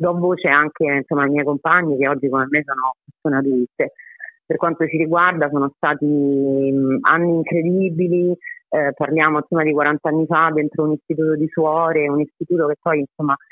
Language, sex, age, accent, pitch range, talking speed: Italian, female, 30-49, native, 145-170 Hz, 175 wpm